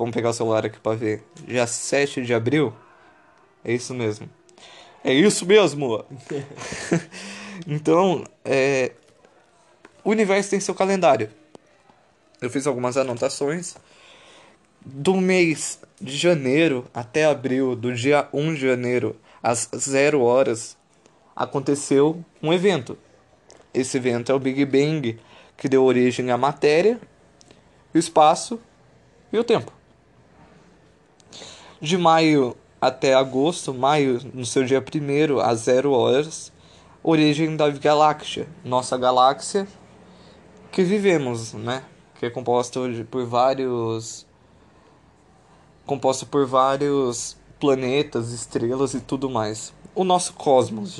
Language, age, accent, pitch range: Portuguese, 20-39, Brazilian, 125-155 Hz